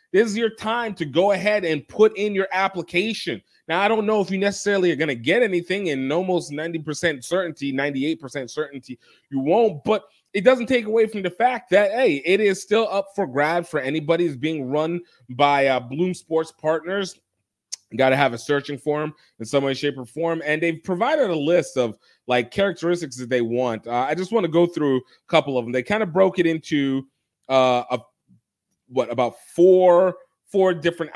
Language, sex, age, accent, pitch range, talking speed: English, male, 30-49, American, 125-175 Hz, 200 wpm